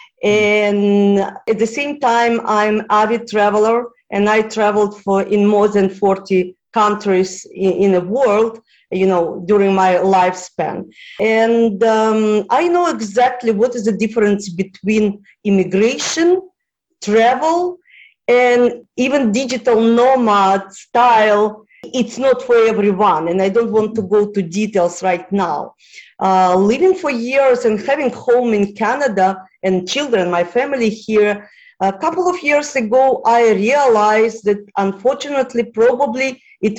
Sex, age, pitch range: female, 40-59, 205-250 Hz